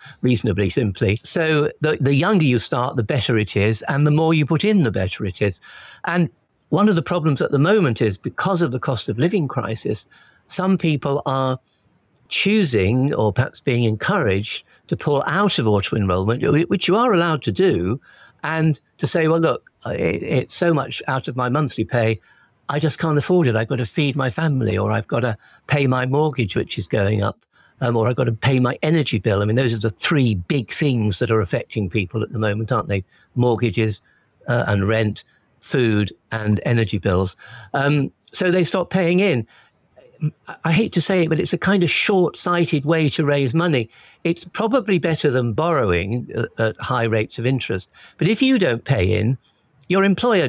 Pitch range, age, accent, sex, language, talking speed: 110-165 Hz, 50-69, British, male, English, 200 wpm